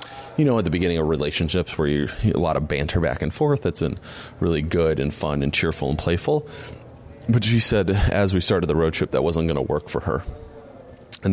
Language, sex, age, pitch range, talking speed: English, male, 30-49, 80-105 Hz, 220 wpm